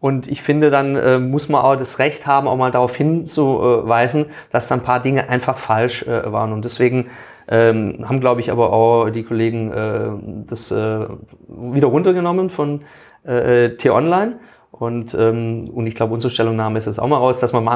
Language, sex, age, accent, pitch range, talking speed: German, male, 30-49, German, 115-150 Hz, 195 wpm